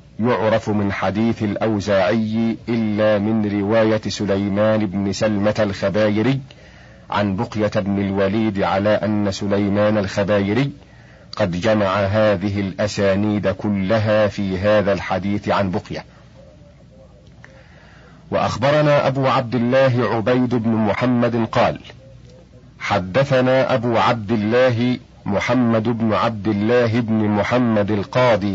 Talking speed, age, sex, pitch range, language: 100 wpm, 50-69, male, 105-115 Hz, Arabic